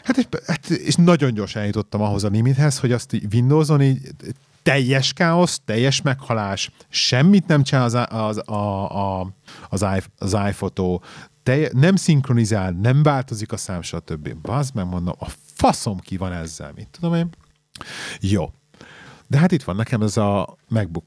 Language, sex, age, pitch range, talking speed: Hungarian, male, 40-59, 90-130 Hz, 155 wpm